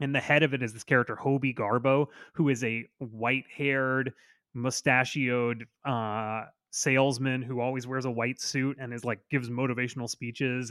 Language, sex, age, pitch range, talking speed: English, male, 20-39, 125-165 Hz, 170 wpm